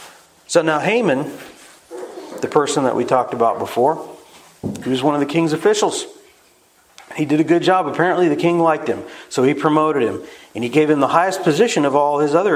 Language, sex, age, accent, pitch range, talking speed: English, male, 40-59, American, 140-175 Hz, 200 wpm